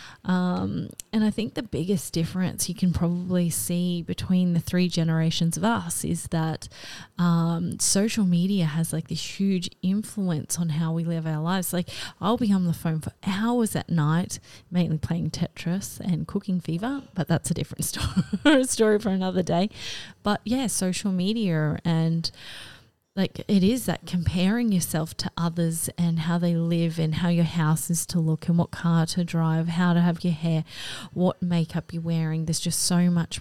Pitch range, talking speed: 165-190 Hz, 180 wpm